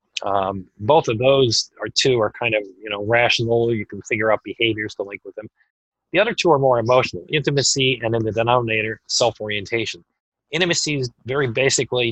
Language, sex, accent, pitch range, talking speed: English, male, American, 105-125 Hz, 185 wpm